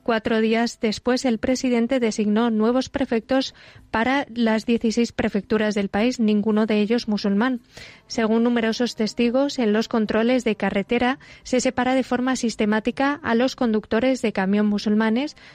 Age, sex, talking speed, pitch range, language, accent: 20-39, female, 145 wpm, 215-245 Hz, Spanish, Spanish